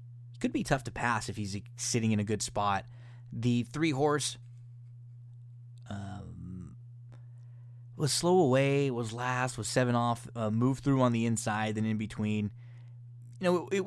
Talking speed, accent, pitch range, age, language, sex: 160 wpm, American, 110-125 Hz, 20-39, English, male